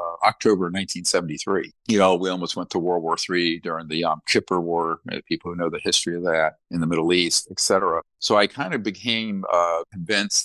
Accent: American